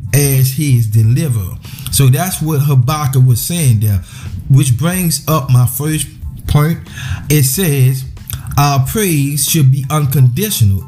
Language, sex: English, male